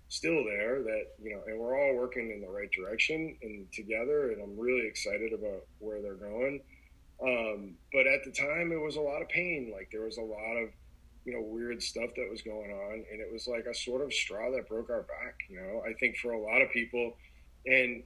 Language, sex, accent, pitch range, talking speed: English, male, American, 110-135 Hz, 235 wpm